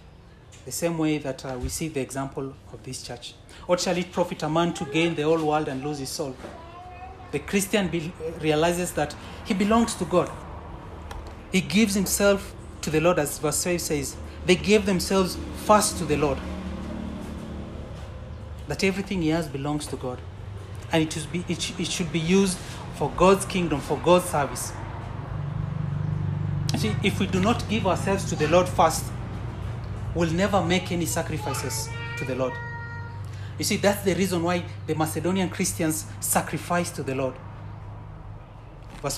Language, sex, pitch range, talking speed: English, male, 110-165 Hz, 160 wpm